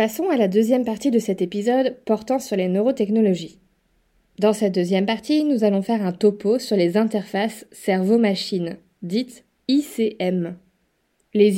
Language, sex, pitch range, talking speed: French, female, 195-250 Hz, 145 wpm